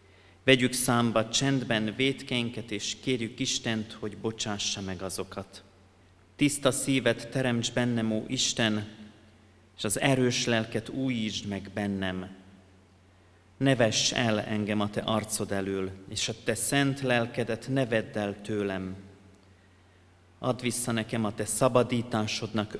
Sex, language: male, Hungarian